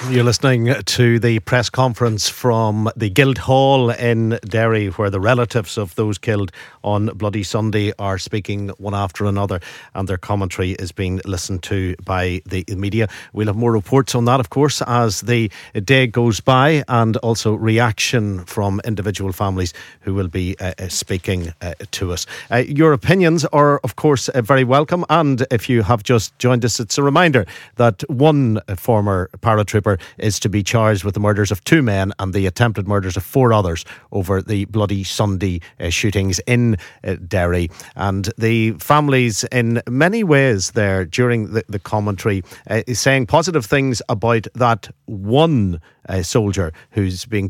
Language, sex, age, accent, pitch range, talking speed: English, male, 50-69, Irish, 95-120 Hz, 170 wpm